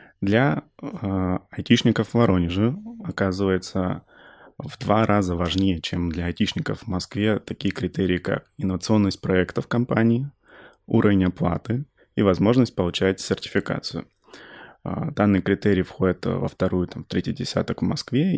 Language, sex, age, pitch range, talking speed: Russian, male, 20-39, 90-105 Hz, 120 wpm